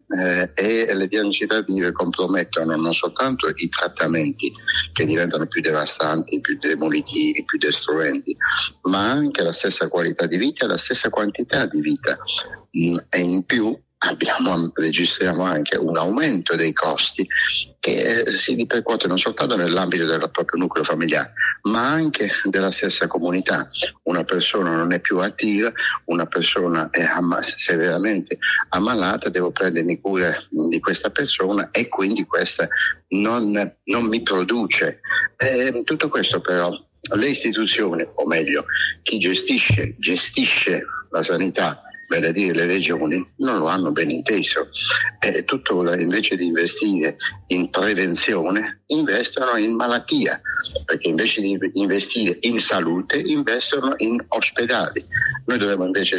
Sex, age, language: male, 60-79, Italian